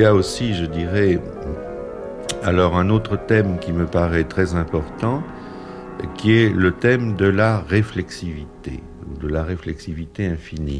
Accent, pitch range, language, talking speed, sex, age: French, 75-95 Hz, French, 145 wpm, male, 60-79